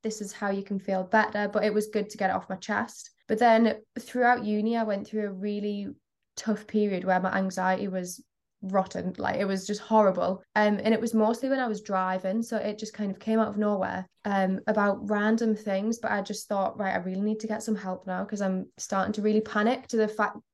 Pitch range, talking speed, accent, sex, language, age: 200-225 Hz, 240 wpm, British, female, English, 20-39